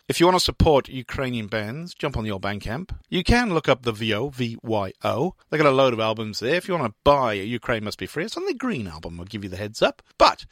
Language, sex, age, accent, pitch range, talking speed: English, male, 40-59, British, 115-195 Hz, 275 wpm